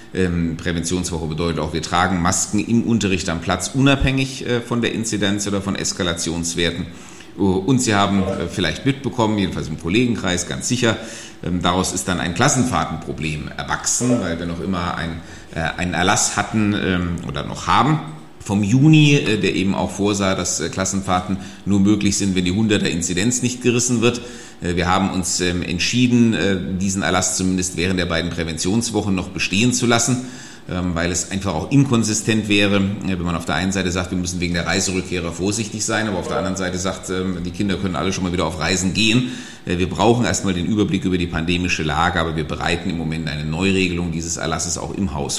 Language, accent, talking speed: German, German, 175 wpm